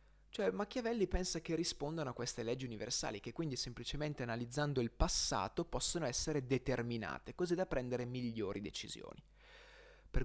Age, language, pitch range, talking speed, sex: 20-39, Italian, 120-175 Hz, 140 wpm, male